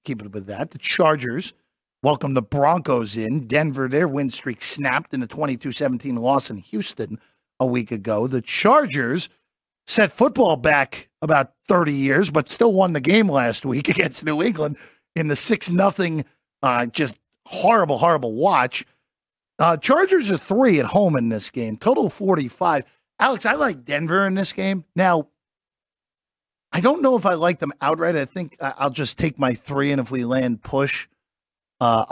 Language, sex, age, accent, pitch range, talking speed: English, male, 50-69, American, 125-175 Hz, 170 wpm